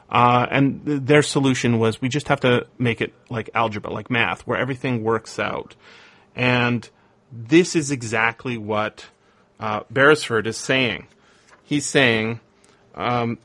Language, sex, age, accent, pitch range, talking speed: English, male, 30-49, American, 115-140 Hz, 140 wpm